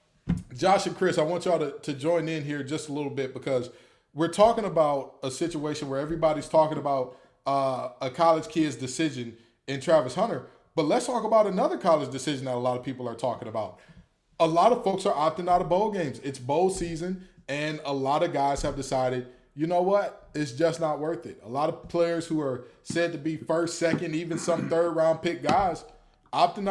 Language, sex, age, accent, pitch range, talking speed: English, male, 20-39, American, 135-170 Hz, 210 wpm